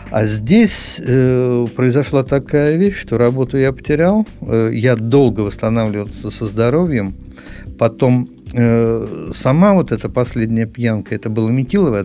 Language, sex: Russian, male